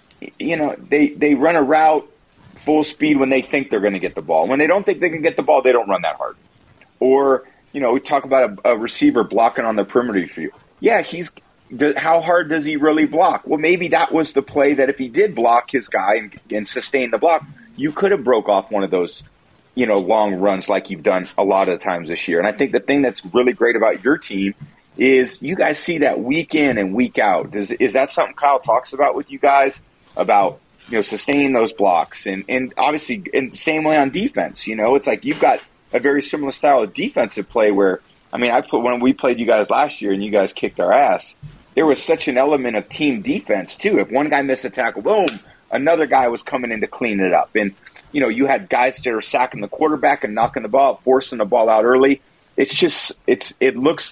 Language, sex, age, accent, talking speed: English, male, 30-49, American, 245 wpm